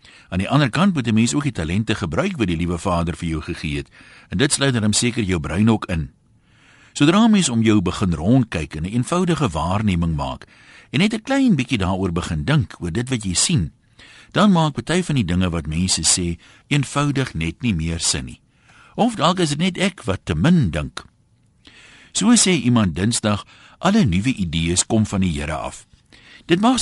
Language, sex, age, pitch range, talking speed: Dutch, male, 60-79, 85-140 Hz, 195 wpm